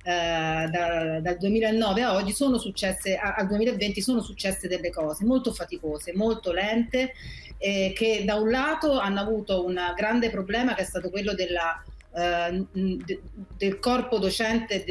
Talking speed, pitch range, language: 135 wpm, 180-210 Hz, Italian